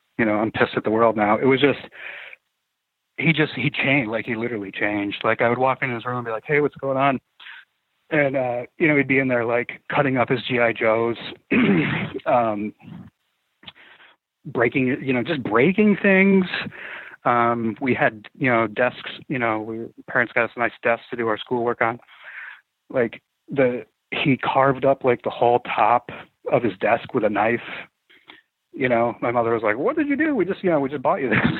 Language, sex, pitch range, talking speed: English, male, 115-140 Hz, 205 wpm